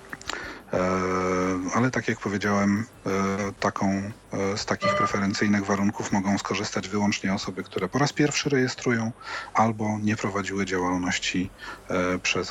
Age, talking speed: 40-59, 105 wpm